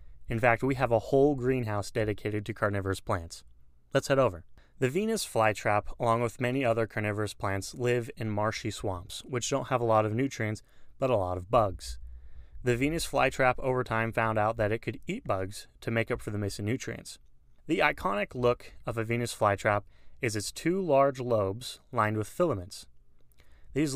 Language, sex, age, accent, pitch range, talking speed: English, male, 30-49, American, 100-125 Hz, 185 wpm